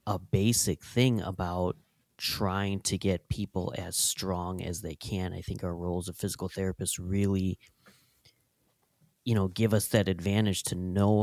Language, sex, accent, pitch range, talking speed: English, male, American, 90-105 Hz, 155 wpm